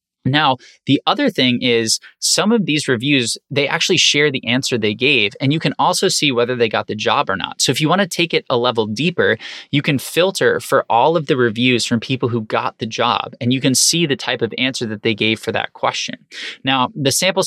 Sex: male